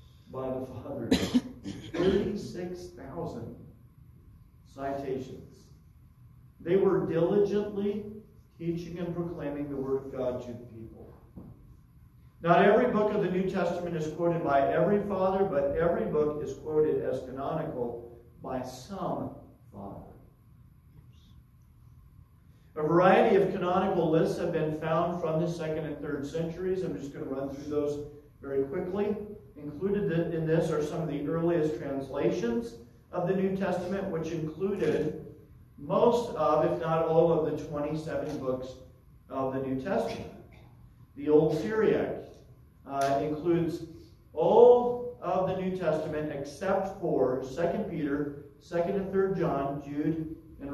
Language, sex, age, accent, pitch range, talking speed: English, male, 50-69, American, 135-180 Hz, 130 wpm